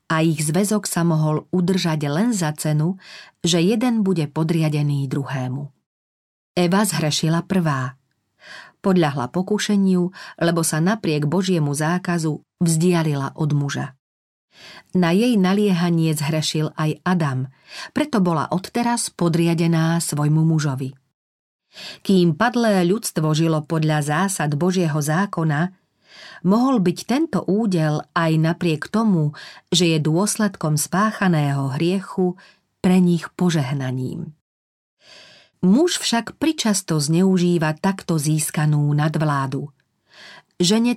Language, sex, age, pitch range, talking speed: Slovak, female, 40-59, 155-190 Hz, 105 wpm